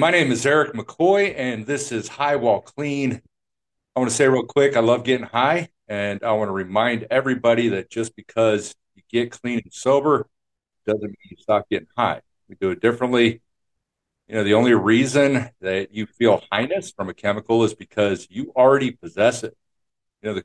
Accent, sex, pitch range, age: American, male, 100-125 Hz, 50-69